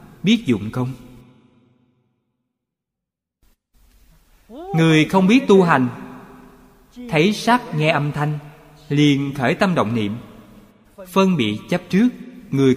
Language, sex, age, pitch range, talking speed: Vietnamese, male, 20-39, 110-175 Hz, 110 wpm